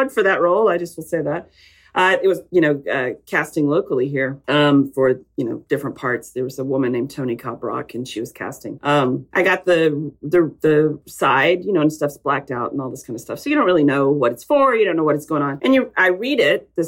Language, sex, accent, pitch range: English, female, American, 150-245 Hz